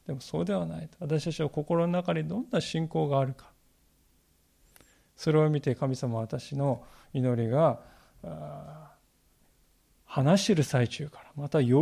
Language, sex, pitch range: Japanese, male, 130-170 Hz